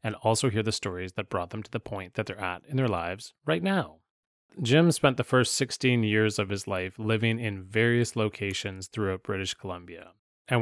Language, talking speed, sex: English, 205 wpm, male